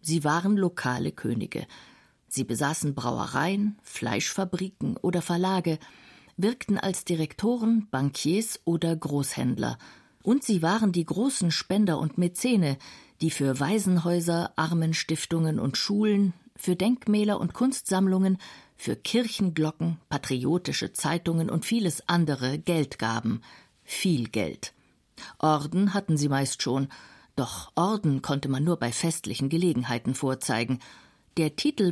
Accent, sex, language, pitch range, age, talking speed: German, female, German, 145-190 Hz, 50-69, 115 wpm